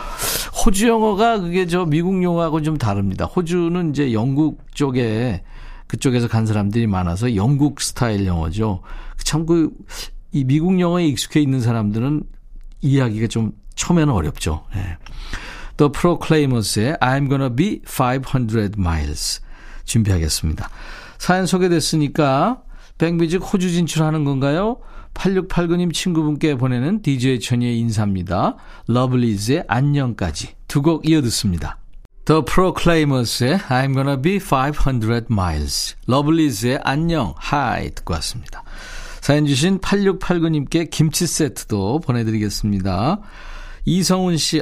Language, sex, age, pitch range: Korean, male, 50-69, 115-165 Hz